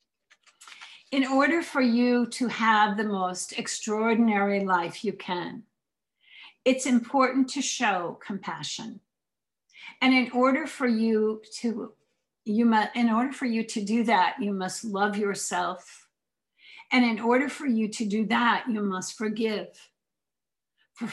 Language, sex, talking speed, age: English, female, 135 wpm, 50-69